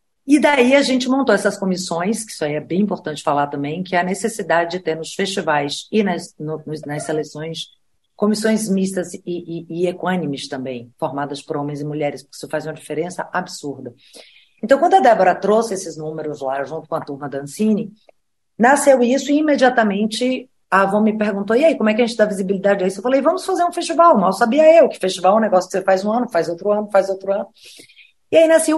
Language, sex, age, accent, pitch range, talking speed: English, female, 40-59, Brazilian, 155-215 Hz, 225 wpm